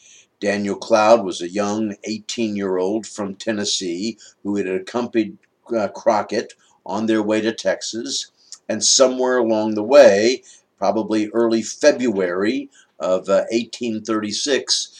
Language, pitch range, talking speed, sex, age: English, 95-115 Hz, 110 wpm, male, 50-69